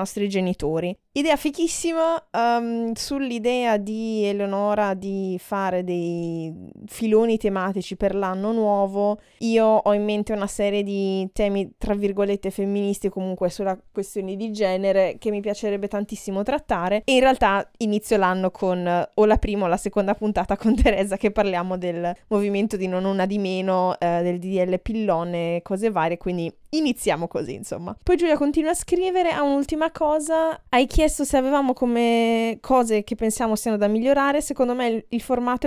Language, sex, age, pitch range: Italian, female, 20-39, 195-250 Hz